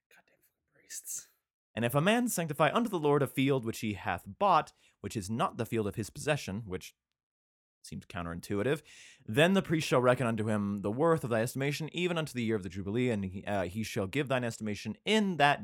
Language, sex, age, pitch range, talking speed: English, male, 30-49, 105-145 Hz, 205 wpm